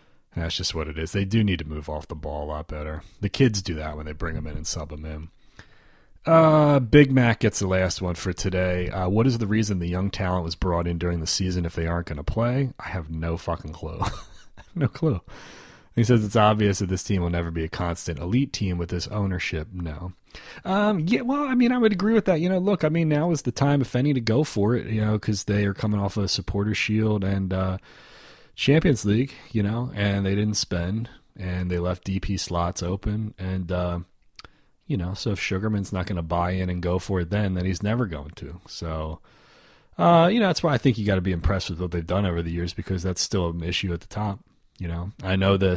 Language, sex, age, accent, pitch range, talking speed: English, male, 30-49, American, 85-105 Hz, 250 wpm